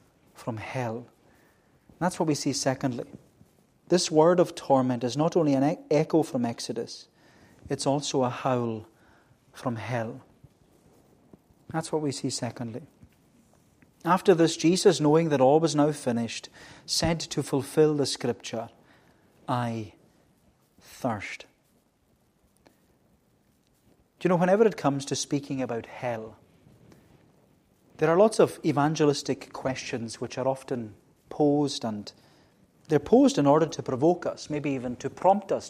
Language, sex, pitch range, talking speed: English, male, 125-160 Hz, 130 wpm